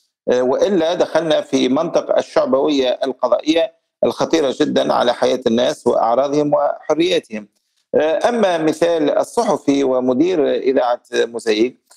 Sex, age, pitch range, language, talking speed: male, 50-69, 130-185 Hz, Arabic, 95 wpm